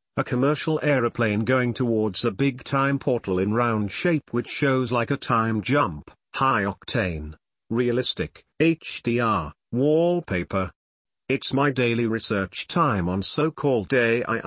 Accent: British